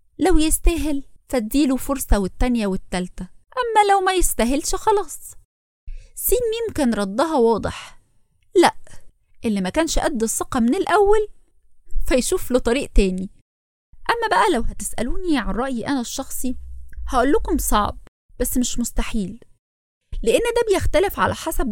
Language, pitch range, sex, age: Arabic, 220-310 Hz, female, 20-39